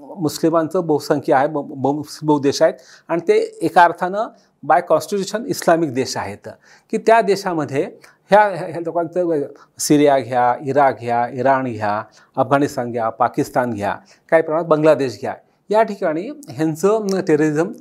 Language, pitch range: Marathi, 145-200 Hz